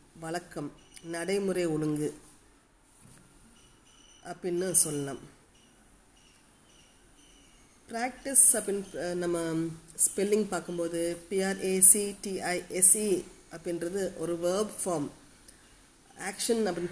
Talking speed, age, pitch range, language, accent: 60 wpm, 30-49, 170-205 Hz, Tamil, native